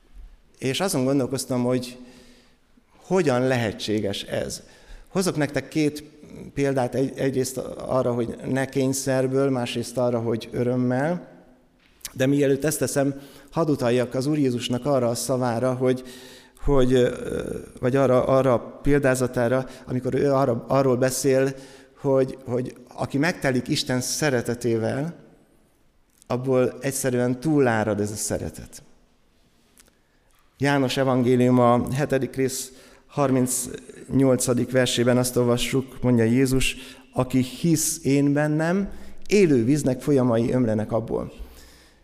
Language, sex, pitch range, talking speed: Hungarian, male, 125-145 Hz, 105 wpm